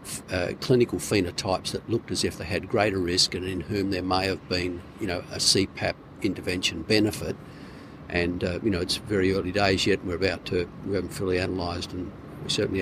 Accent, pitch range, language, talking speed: Australian, 90-100 Hz, English, 200 wpm